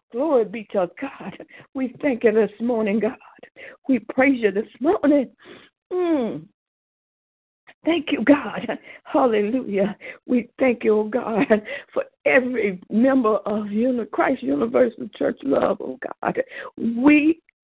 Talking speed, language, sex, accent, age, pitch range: 120 wpm, English, female, American, 60-79, 240-300 Hz